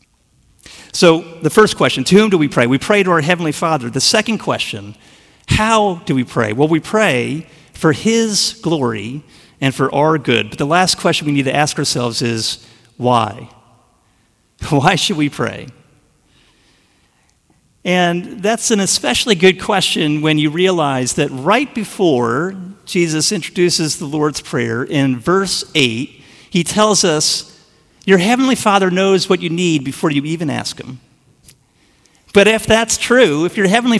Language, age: English, 50-69